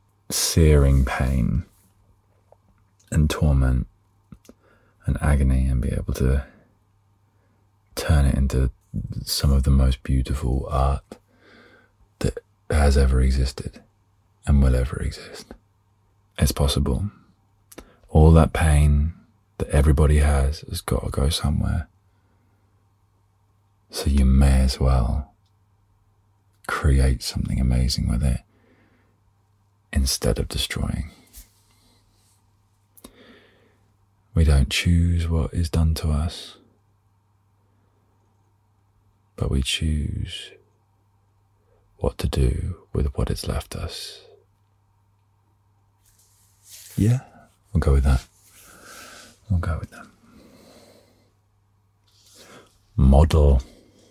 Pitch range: 75-100 Hz